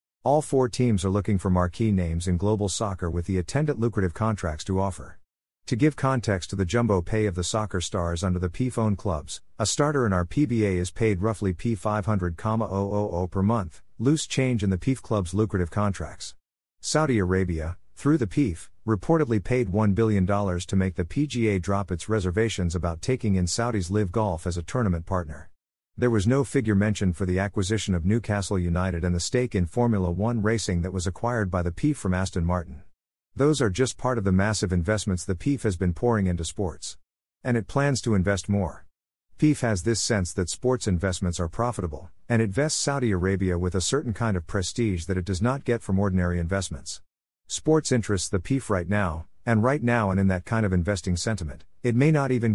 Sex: male